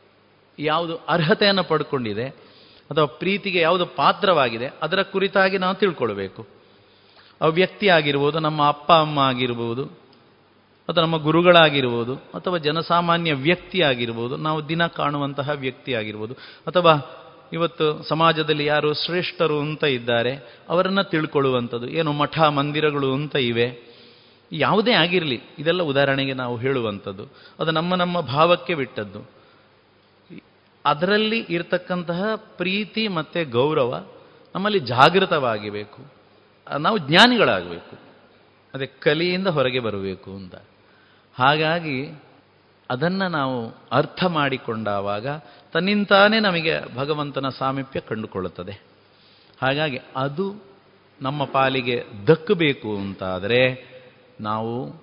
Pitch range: 125-170 Hz